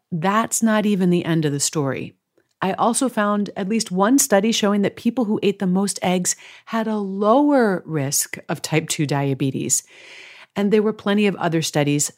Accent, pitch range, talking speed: American, 160-225 Hz, 185 wpm